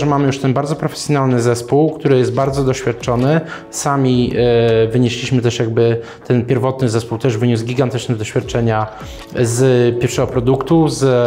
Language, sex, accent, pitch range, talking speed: Polish, male, native, 120-145 Hz, 140 wpm